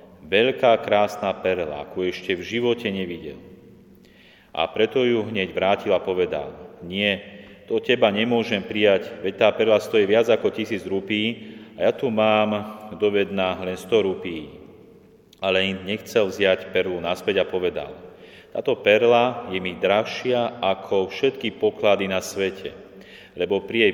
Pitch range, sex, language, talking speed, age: 95-110 Hz, male, Slovak, 140 wpm, 40-59